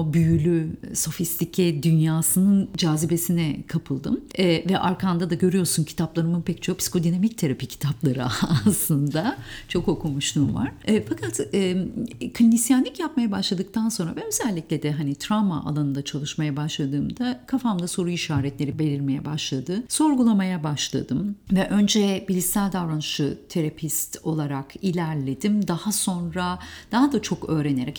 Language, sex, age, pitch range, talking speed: Turkish, female, 50-69, 155-215 Hz, 120 wpm